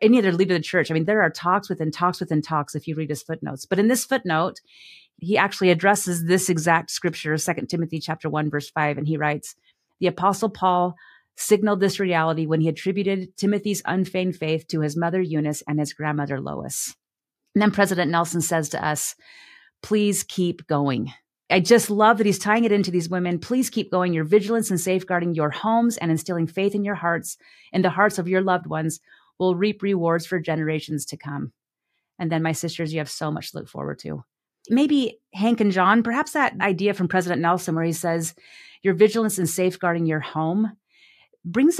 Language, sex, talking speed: English, female, 200 wpm